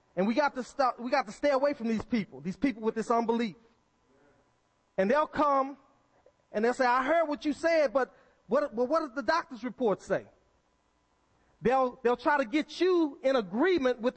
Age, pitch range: 30-49, 230-285 Hz